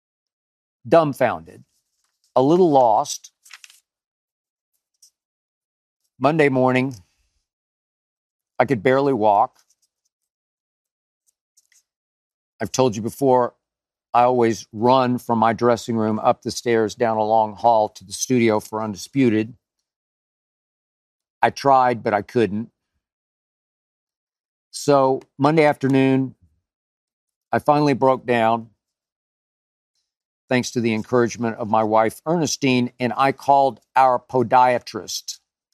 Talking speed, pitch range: 95 wpm, 110-130 Hz